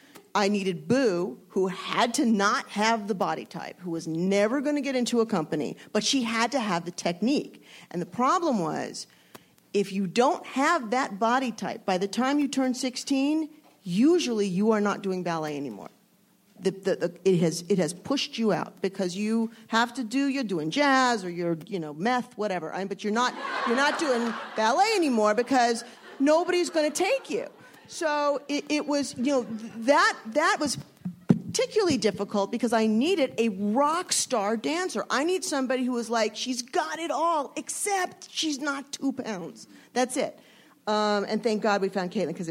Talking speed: 190 wpm